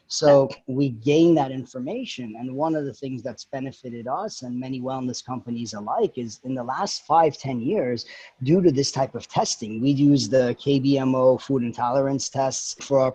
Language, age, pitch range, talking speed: English, 30-49, 125-150 Hz, 185 wpm